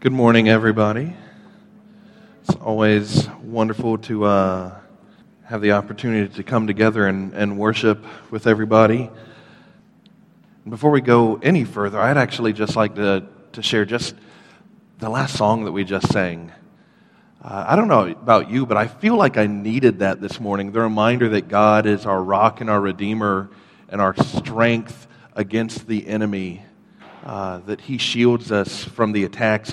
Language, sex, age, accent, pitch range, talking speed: English, male, 40-59, American, 100-120 Hz, 160 wpm